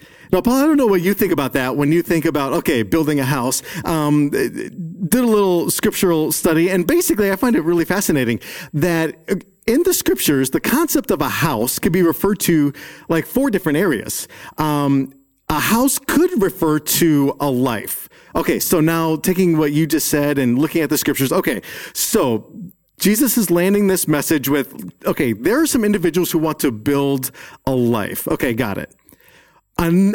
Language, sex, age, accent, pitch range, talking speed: English, male, 40-59, American, 145-195 Hz, 185 wpm